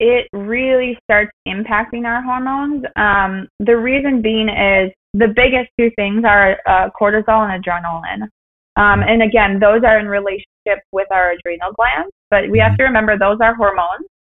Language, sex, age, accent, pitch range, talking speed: English, female, 20-39, American, 190-230 Hz, 165 wpm